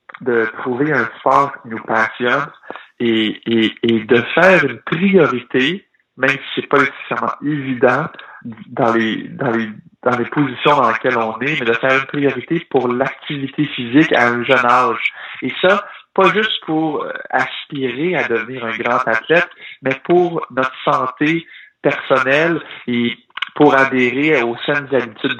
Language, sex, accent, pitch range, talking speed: French, male, French, 115-145 Hz, 155 wpm